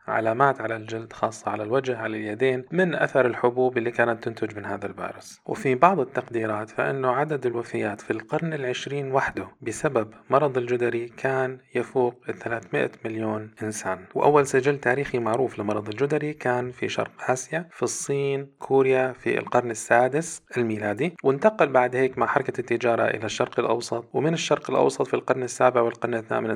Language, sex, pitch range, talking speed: Arabic, male, 110-130 Hz, 155 wpm